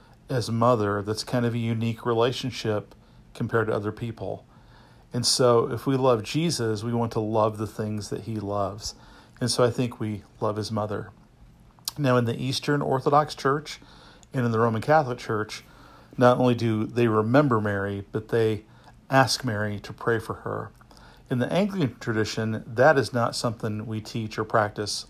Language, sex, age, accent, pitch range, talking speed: English, male, 50-69, American, 110-125 Hz, 175 wpm